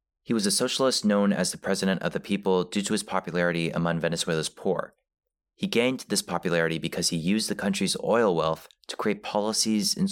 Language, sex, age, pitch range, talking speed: English, male, 30-49, 85-100 Hz, 195 wpm